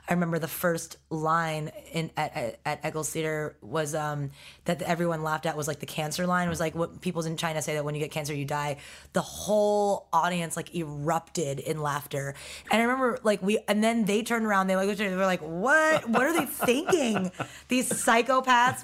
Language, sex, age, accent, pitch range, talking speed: English, female, 20-39, American, 155-195 Hz, 205 wpm